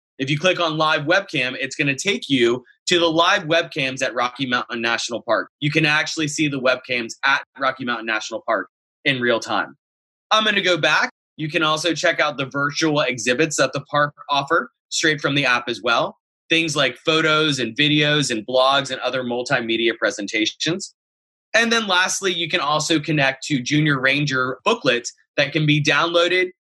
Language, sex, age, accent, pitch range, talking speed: English, male, 20-39, American, 125-165 Hz, 185 wpm